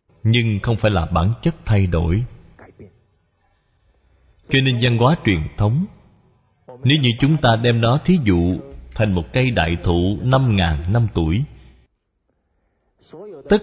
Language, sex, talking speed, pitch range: Vietnamese, male, 135 wpm, 95-135 Hz